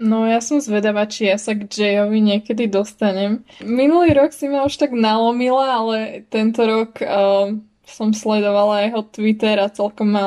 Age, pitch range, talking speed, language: 20-39, 210-250 Hz, 170 wpm, Slovak